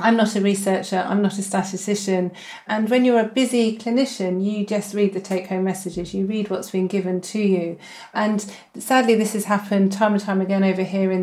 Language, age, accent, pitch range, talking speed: English, 40-59, British, 185-220 Hz, 210 wpm